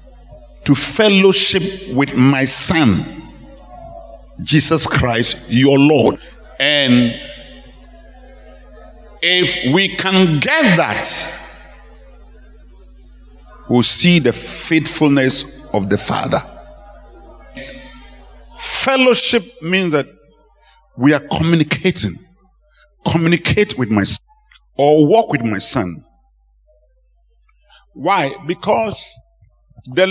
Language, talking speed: English, 80 wpm